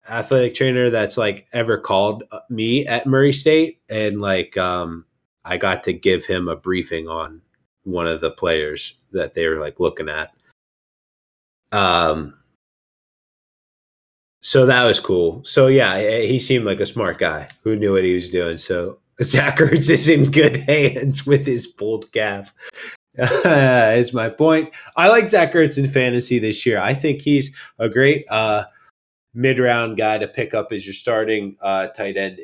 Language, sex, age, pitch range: English, male, 20-39, 105-140 Hz